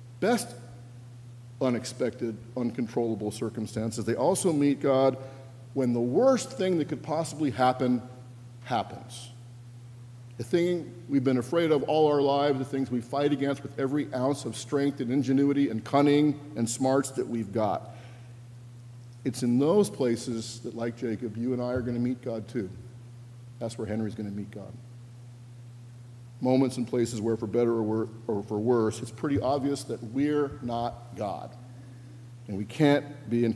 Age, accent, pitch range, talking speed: 50-69, American, 120-130 Hz, 155 wpm